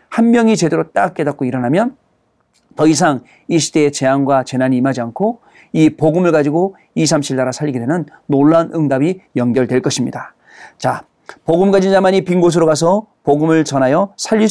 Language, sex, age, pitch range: Korean, male, 40-59, 135-195 Hz